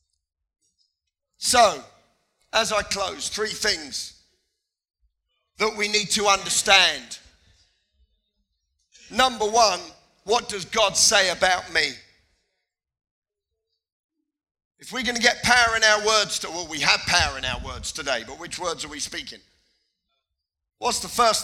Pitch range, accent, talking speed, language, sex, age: 170-220 Hz, British, 130 wpm, English, male, 50-69